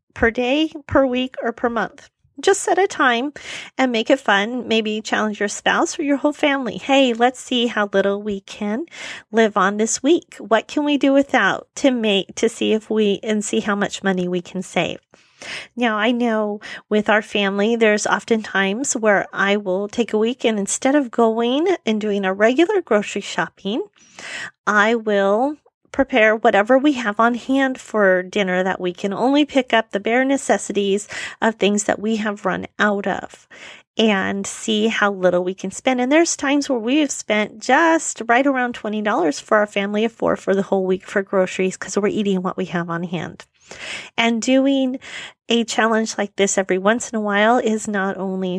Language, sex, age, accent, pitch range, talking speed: English, female, 40-59, American, 195-250 Hz, 190 wpm